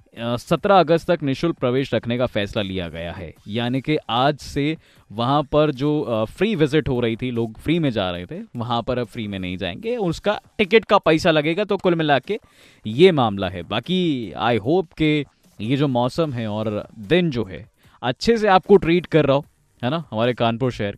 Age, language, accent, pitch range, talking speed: 20-39, Hindi, native, 115-165 Hz, 205 wpm